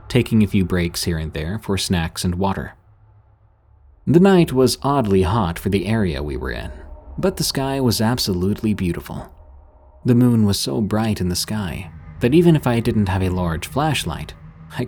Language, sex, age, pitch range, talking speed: English, male, 30-49, 90-120 Hz, 185 wpm